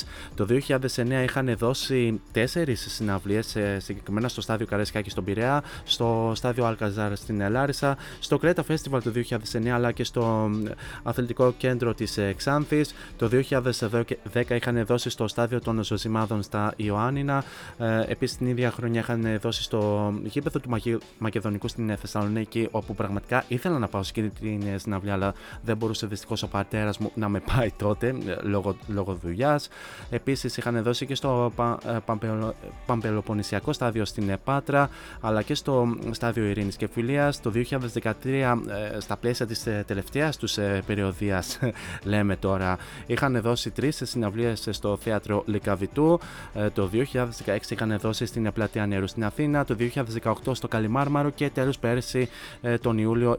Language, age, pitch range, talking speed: Greek, 20-39, 105-125 Hz, 140 wpm